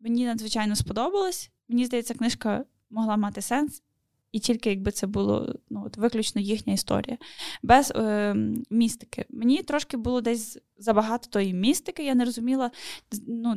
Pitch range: 220-265 Hz